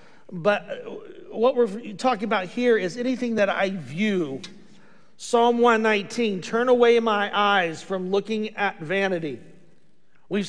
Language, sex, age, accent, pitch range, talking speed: English, male, 50-69, American, 160-210 Hz, 125 wpm